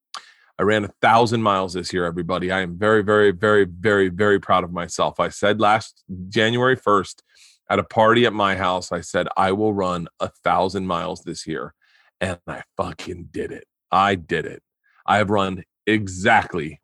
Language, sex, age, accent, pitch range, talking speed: English, male, 30-49, American, 100-135 Hz, 175 wpm